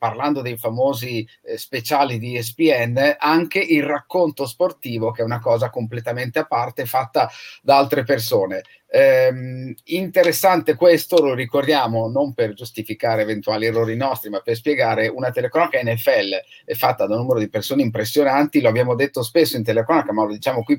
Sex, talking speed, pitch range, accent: male, 160 wpm, 120-175 Hz, native